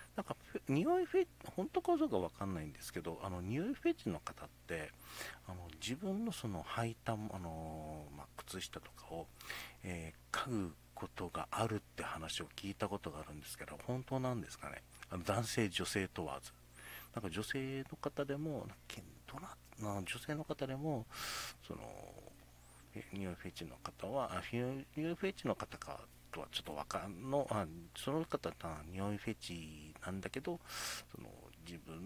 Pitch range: 80-120 Hz